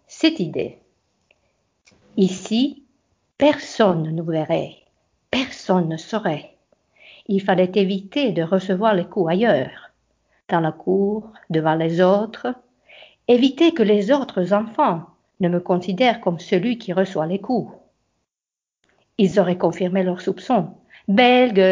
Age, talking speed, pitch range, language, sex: 50-69, 120 wpm, 180-230 Hz, Finnish, female